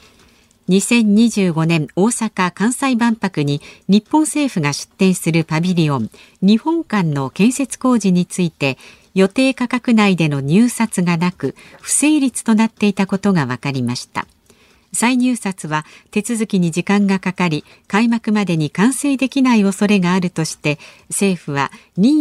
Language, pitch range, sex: Japanese, 170-235 Hz, female